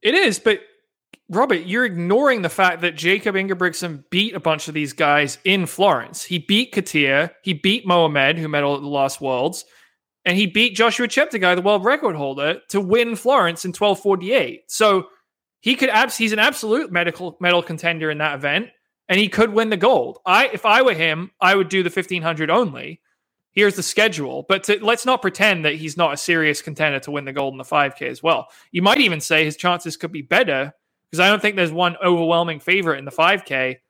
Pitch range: 150-195 Hz